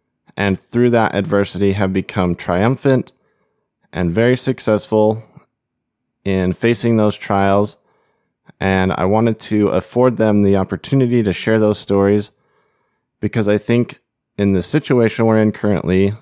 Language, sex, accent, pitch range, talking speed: English, male, American, 95-115 Hz, 130 wpm